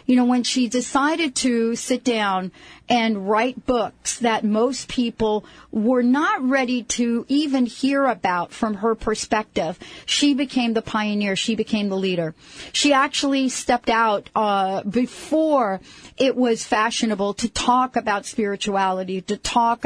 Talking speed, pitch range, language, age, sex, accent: 140 wpm, 195-250 Hz, English, 40-59, female, American